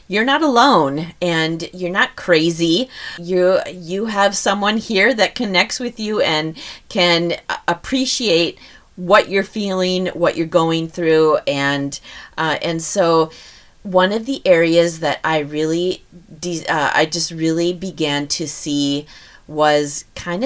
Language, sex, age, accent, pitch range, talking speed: English, female, 30-49, American, 140-175 Hz, 140 wpm